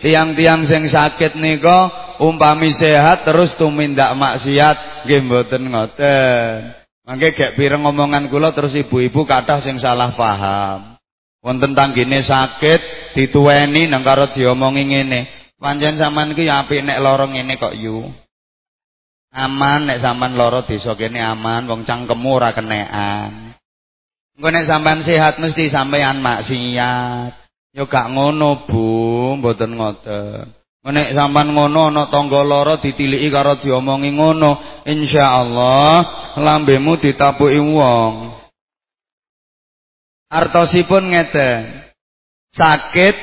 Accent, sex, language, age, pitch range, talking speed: Indonesian, male, English, 30-49, 125-155 Hz, 110 wpm